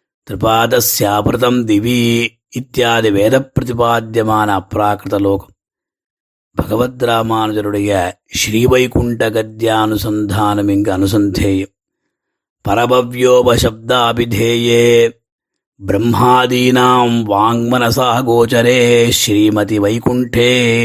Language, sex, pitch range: Tamil, male, 105-120 Hz